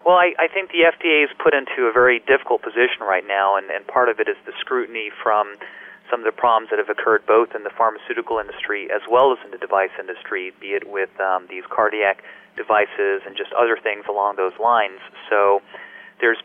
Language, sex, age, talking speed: English, male, 40-59, 215 wpm